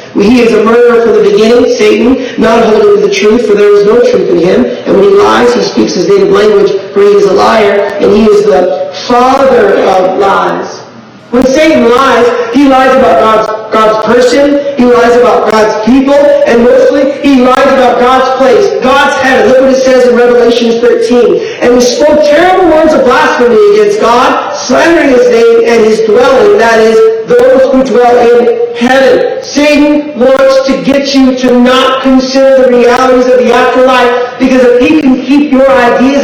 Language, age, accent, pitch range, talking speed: English, 40-59, American, 235-285 Hz, 185 wpm